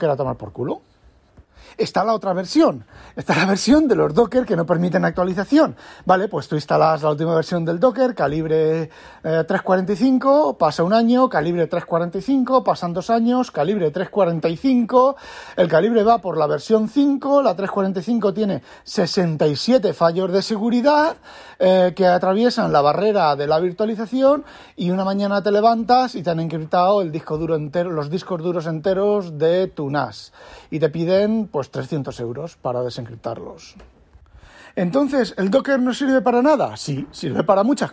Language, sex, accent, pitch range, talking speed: Spanish, male, Spanish, 150-220 Hz, 160 wpm